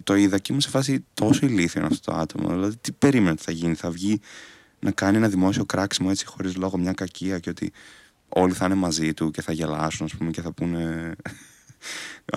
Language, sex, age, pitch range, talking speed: Greek, male, 20-39, 85-120 Hz, 205 wpm